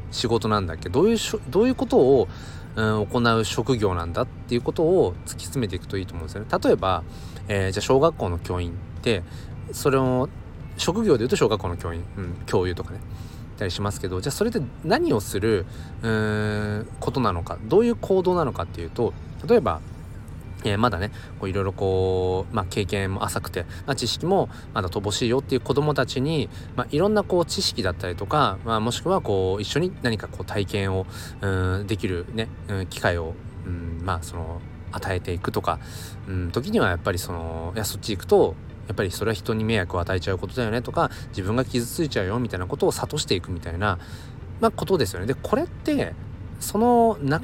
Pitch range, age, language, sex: 90-120 Hz, 20-39, Japanese, male